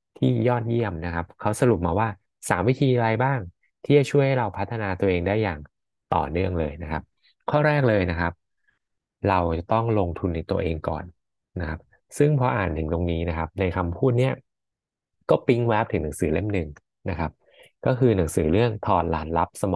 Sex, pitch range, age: male, 85-115 Hz, 20-39